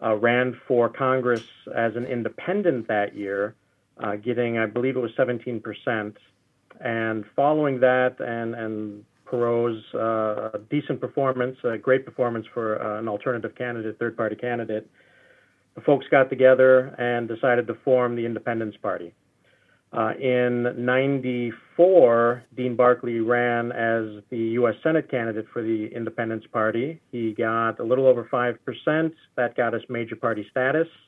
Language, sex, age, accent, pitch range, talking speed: English, male, 40-59, American, 115-125 Hz, 145 wpm